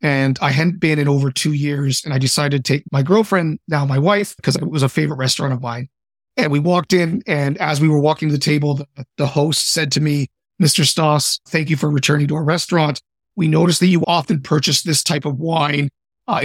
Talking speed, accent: 230 wpm, American